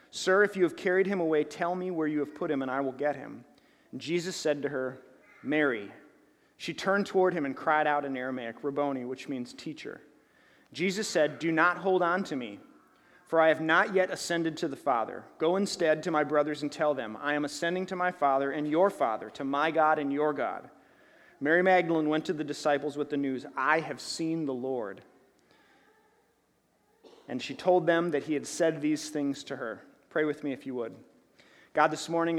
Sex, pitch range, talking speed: male, 135-165 Hz, 210 wpm